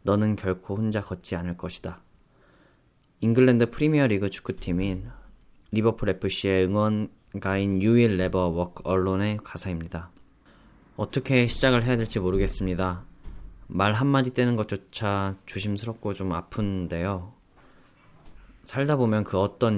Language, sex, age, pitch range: Korean, male, 20-39, 90-110 Hz